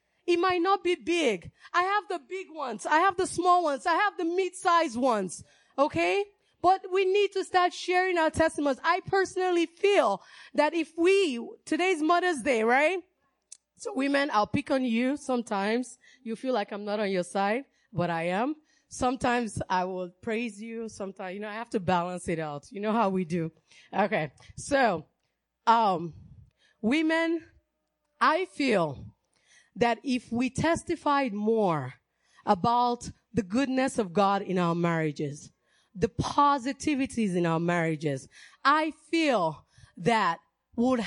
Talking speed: 150 wpm